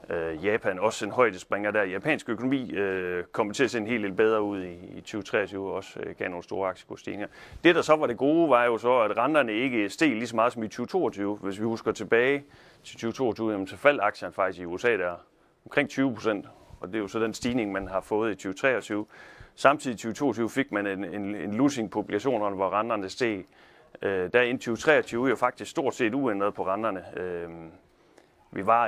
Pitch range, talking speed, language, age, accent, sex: 100-120 Hz, 215 wpm, Danish, 30-49, native, male